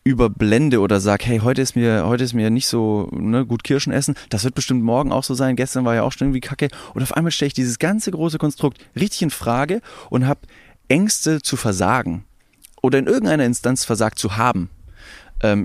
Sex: male